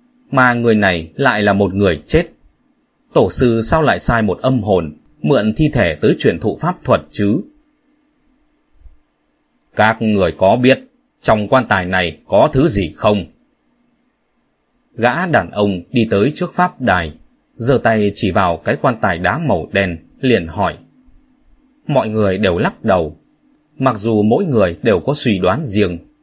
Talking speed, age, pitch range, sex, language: 160 wpm, 20-39, 100-165 Hz, male, Vietnamese